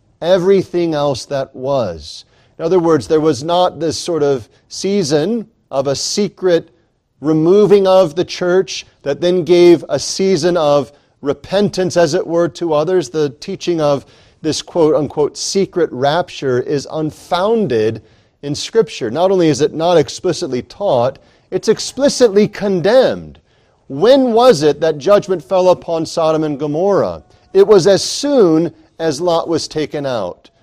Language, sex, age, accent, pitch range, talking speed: English, male, 40-59, American, 150-195 Hz, 145 wpm